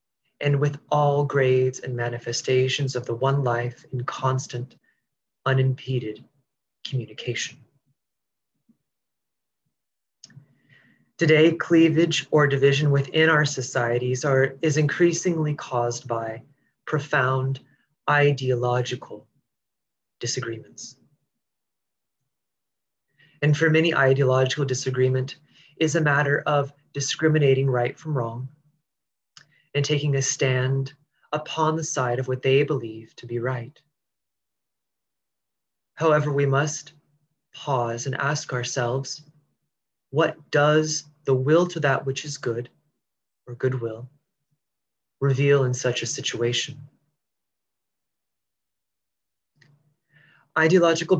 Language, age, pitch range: English, 30-49, 125-150 Hz